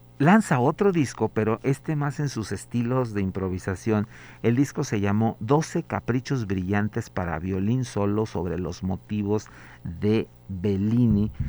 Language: Spanish